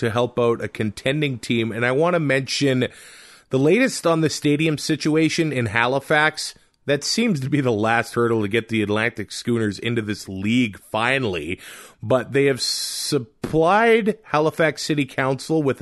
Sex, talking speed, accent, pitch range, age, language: male, 165 wpm, American, 120-150 Hz, 30-49, English